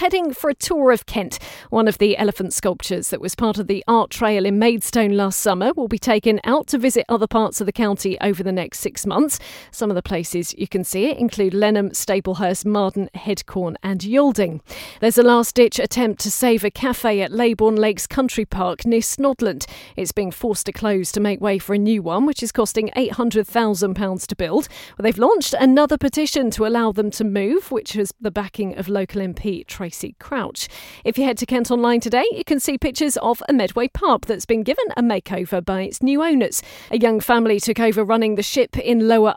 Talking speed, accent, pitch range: 210 wpm, British, 200-245 Hz